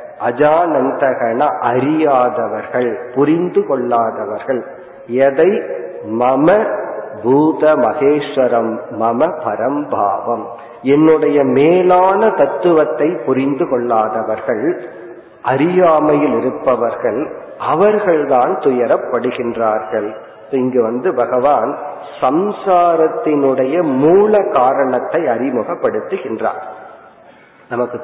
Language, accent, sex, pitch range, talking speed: Tamil, native, male, 130-170 Hz, 35 wpm